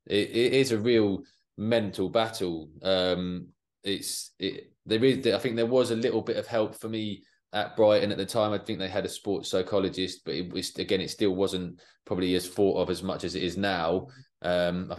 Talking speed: 215 wpm